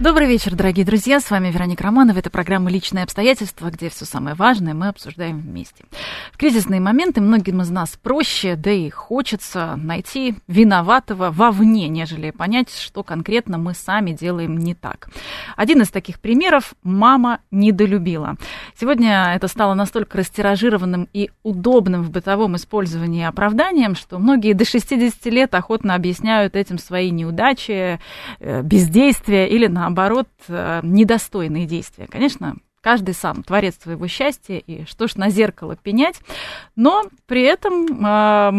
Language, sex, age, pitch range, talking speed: Russian, female, 30-49, 180-235 Hz, 140 wpm